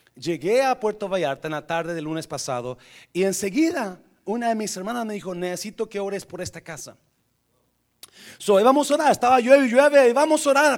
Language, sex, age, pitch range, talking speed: Spanish, male, 40-59, 160-270 Hz, 195 wpm